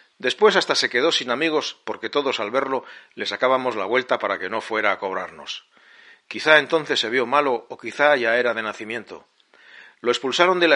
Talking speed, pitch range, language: 195 wpm, 115-155 Hz, Spanish